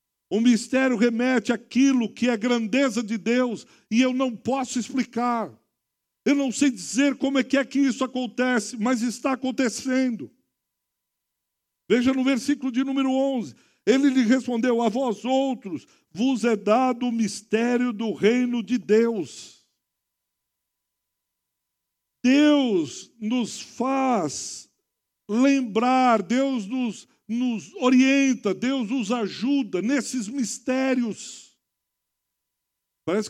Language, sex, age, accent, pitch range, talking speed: Portuguese, male, 60-79, Brazilian, 240-270 Hz, 115 wpm